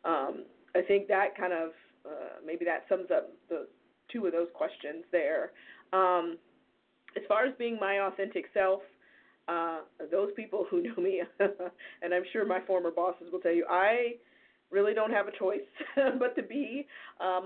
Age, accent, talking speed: 20-39, American, 170 wpm